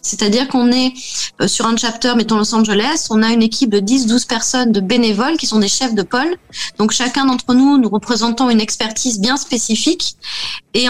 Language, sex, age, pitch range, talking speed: French, female, 20-39, 215-265 Hz, 195 wpm